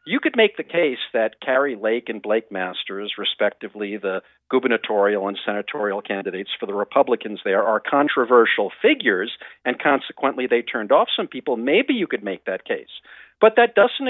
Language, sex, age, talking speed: English, male, 50-69, 170 wpm